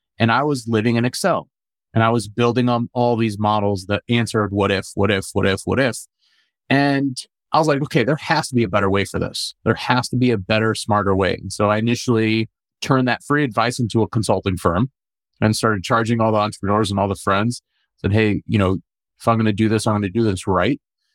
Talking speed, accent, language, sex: 240 wpm, American, English, male